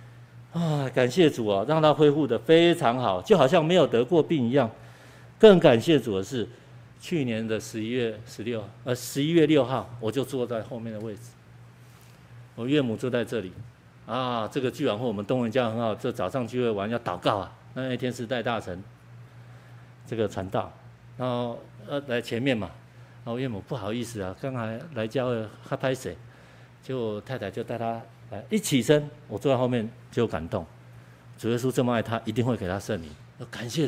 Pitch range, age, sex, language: 110-130 Hz, 50-69, male, Chinese